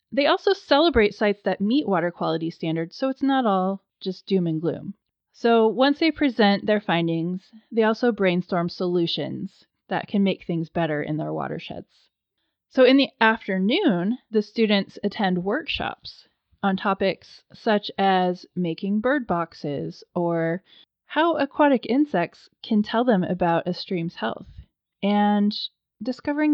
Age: 20-39